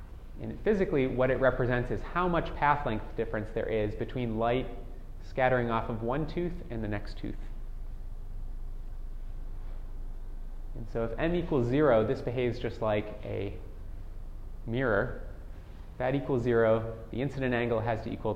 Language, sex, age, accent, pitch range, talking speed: English, male, 30-49, American, 100-120 Hz, 150 wpm